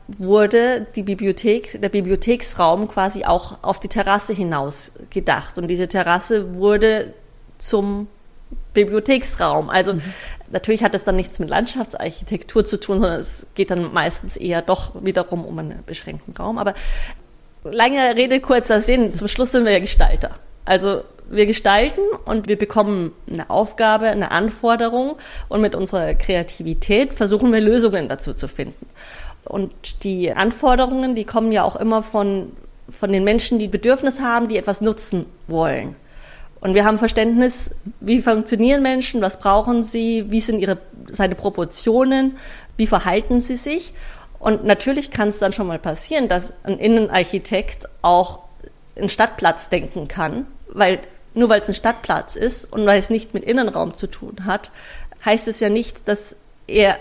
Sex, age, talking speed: female, 30-49, 155 wpm